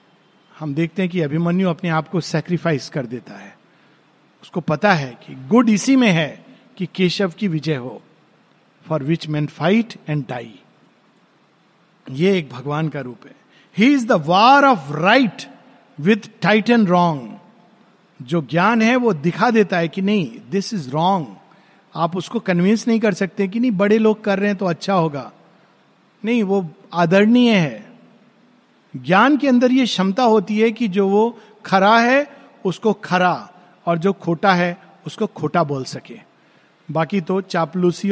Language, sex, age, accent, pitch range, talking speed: Hindi, male, 50-69, native, 170-225 Hz, 165 wpm